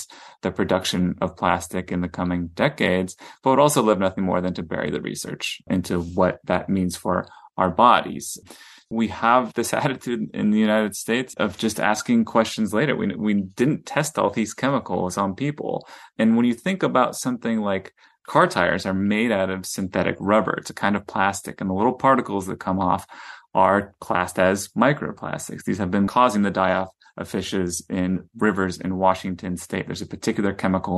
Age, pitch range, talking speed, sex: 30-49, 95-115 Hz, 190 wpm, male